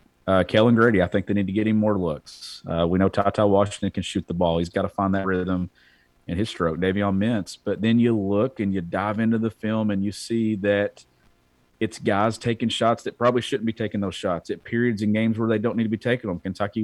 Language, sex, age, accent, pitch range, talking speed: English, male, 40-59, American, 95-110 Hz, 250 wpm